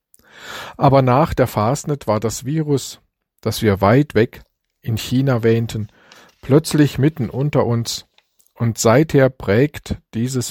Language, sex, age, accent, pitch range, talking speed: German, male, 50-69, German, 110-135 Hz, 125 wpm